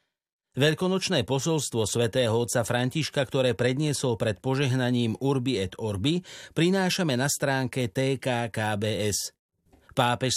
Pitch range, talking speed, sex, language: 120-155 Hz, 100 wpm, male, Slovak